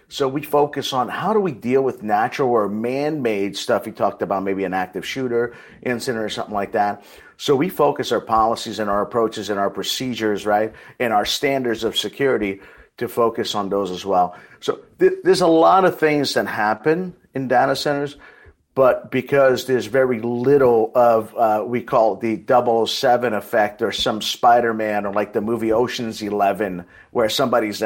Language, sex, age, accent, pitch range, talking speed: English, male, 50-69, American, 105-135 Hz, 180 wpm